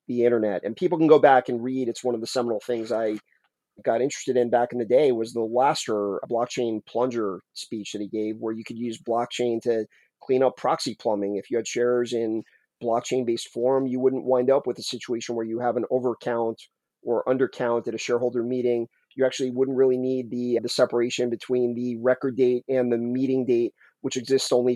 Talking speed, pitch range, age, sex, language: 210 wpm, 115-130 Hz, 30-49, male, English